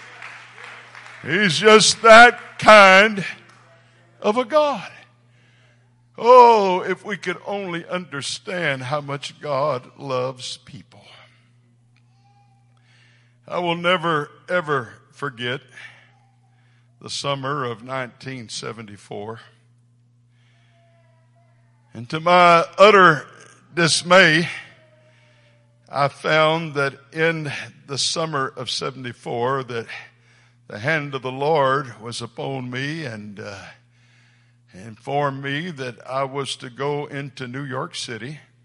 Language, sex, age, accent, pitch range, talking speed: English, male, 60-79, American, 120-150 Hz, 95 wpm